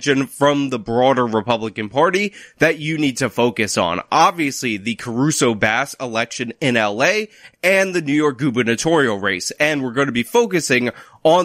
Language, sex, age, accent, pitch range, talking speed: English, male, 20-39, American, 125-160 Hz, 155 wpm